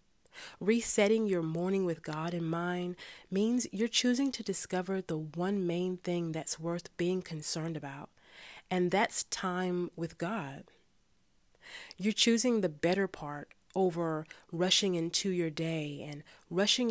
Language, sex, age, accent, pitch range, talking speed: English, female, 30-49, American, 160-195 Hz, 135 wpm